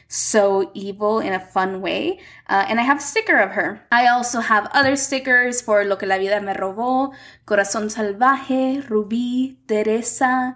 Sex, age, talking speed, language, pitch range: female, 10-29, 170 wpm, English, 205-255 Hz